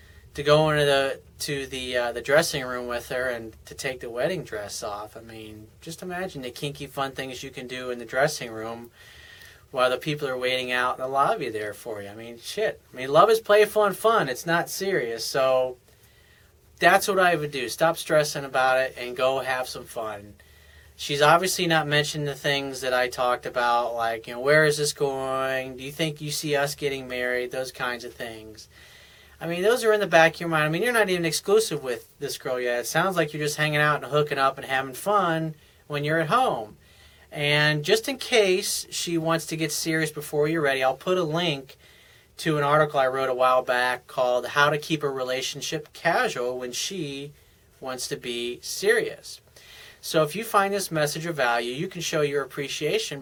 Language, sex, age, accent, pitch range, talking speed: English, male, 30-49, American, 125-160 Hz, 215 wpm